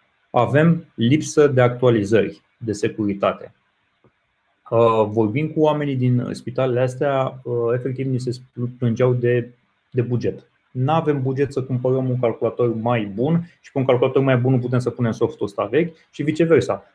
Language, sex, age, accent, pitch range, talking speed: Romanian, male, 30-49, native, 110-130 Hz, 150 wpm